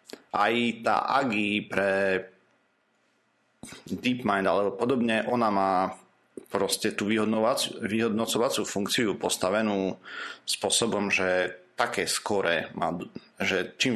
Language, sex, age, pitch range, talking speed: Slovak, male, 40-59, 90-110 Hz, 80 wpm